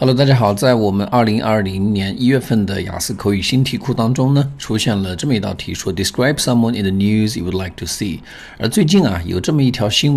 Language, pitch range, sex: Chinese, 95-110 Hz, male